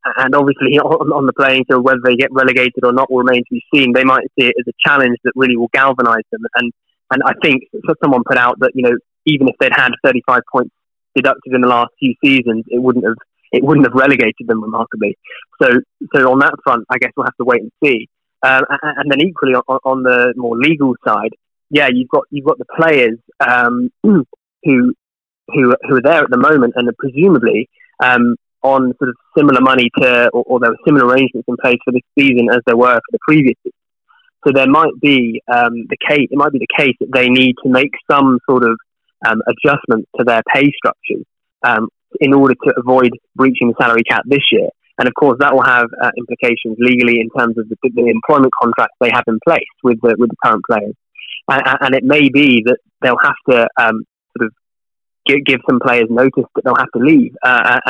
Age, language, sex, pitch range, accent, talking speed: 20-39, English, male, 120-140 Hz, British, 225 wpm